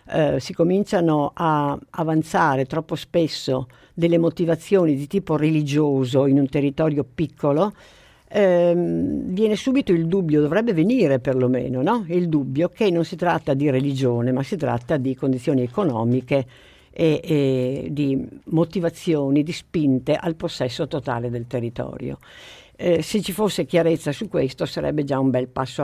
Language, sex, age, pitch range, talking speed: Italian, female, 50-69, 135-175 Hz, 145 wpm